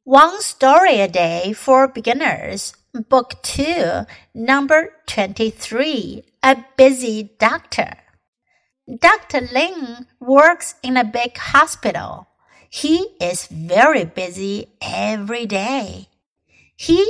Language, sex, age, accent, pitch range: Chinese, female, 60-79, American, 225-315 Hz